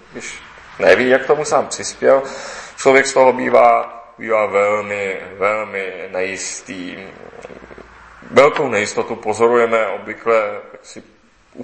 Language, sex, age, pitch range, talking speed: Czech, male, 30-49, 110-135 Hz, 100 wpm